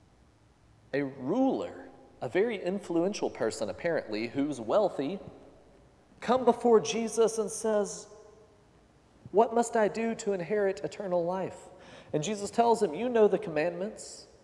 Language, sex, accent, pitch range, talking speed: English, male, American, 140-200 Hz, 125 wpm